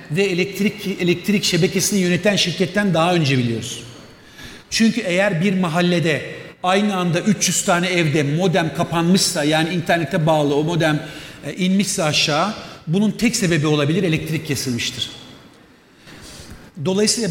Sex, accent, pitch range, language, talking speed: male, native, 155-195 Hz, Turkish, 120 wpm